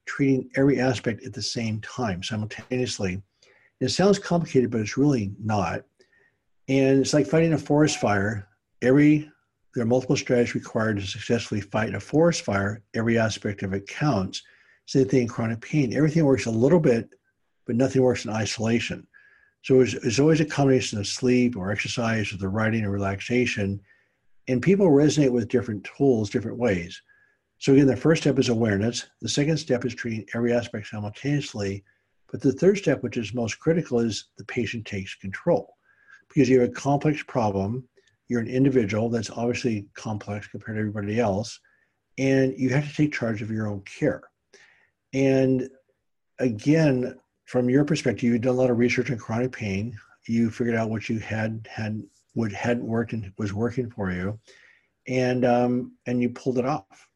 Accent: American